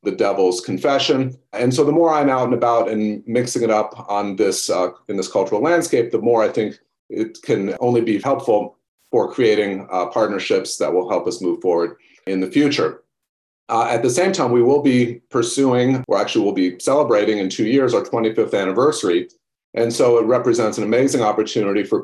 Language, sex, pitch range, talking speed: English, male, 110-140 Hz, 195 wpm